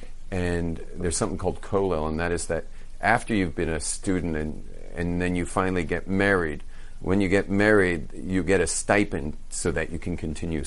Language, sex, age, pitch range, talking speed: English, male, 40-59, 80-100 Hz, 190 wpm